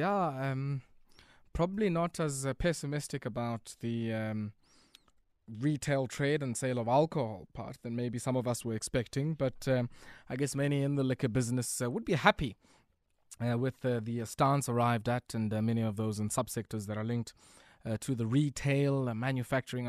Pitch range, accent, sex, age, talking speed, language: 120-155 Hz, South African, male, 20-39, 185 wpm, English